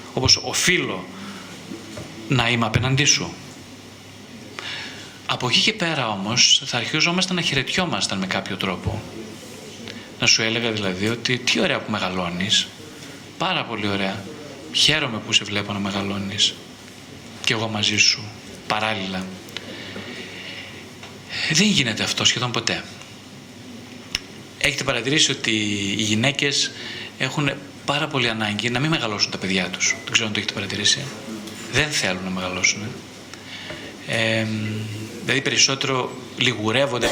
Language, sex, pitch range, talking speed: Greek, male, 105-140 Hz, 120 wpm